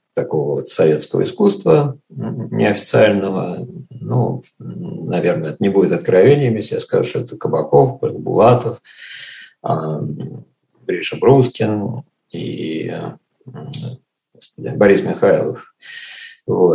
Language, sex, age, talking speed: Russian, male, 50-69, 80 wpm